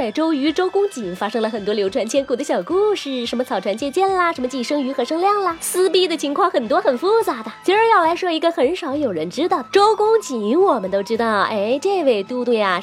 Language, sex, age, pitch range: Chinese, female, 20-39, 260-365 Hz